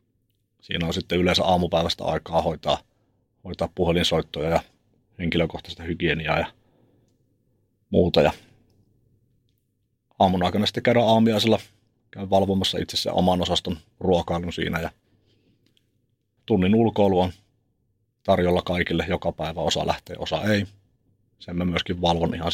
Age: 30-49